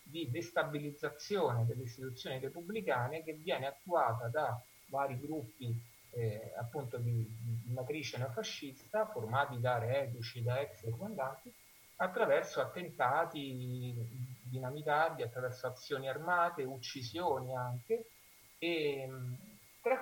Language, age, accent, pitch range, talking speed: Italian, 30-49, native, 125-160 Hz, 100 wpm